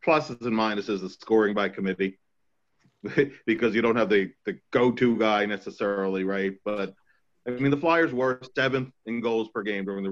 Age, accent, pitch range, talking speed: 40-59, American, 100-120 Hz, 180 wpm